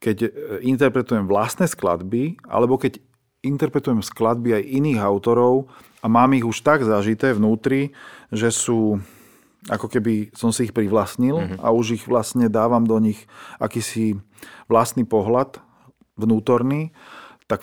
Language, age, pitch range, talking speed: Slovak, 40-59, 105-130 Hz, 130 wpm